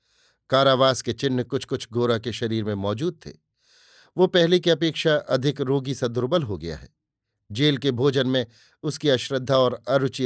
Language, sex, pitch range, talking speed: Hindi, male, 120-150 Hz, 170 wpm